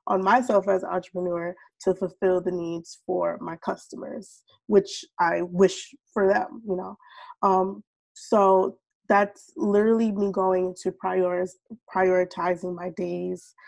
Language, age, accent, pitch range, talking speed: English, 20-39, American, 185-220 Hz, 125 wpm